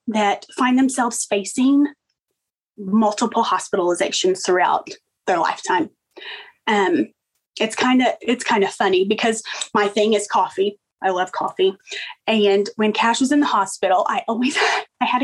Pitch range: 200-270 Hz